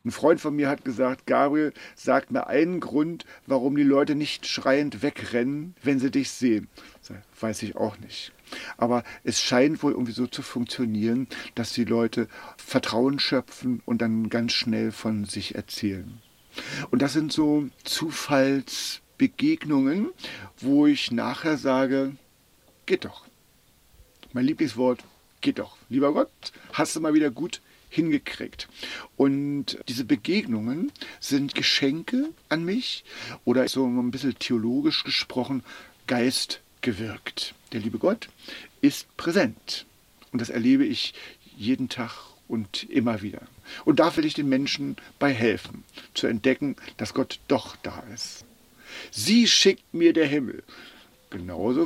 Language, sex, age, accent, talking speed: German, male, 50-69, German, 140 wpm